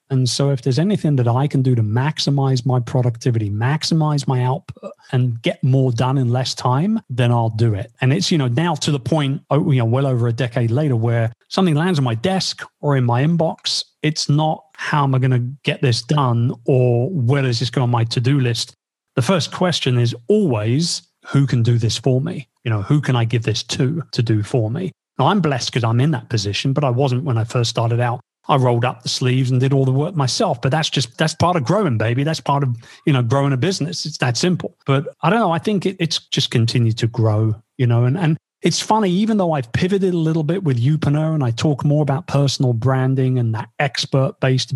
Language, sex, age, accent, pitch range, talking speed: English, male, 40-59, British, 120-150 Hz, 240 wpm